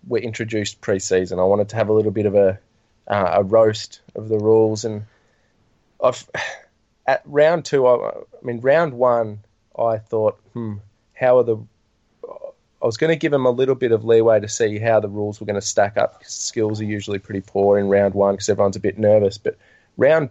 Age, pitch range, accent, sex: 20-39, 105-120 Hz, Australian, male